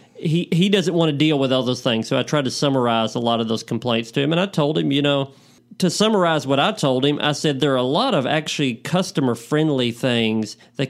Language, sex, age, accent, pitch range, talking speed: English, male, 40-59, American, 125-150 Hz, 250 wpm